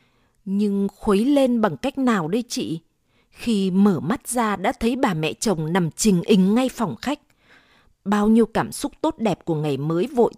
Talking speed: 190 wpm